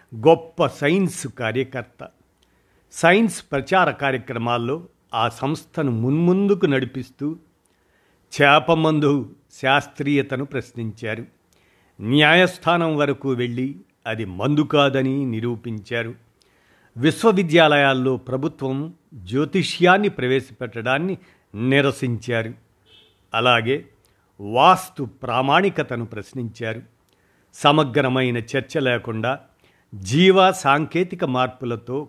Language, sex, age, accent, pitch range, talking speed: Telugu, male, 50-69, native, 115-145 Hz, 65 wpm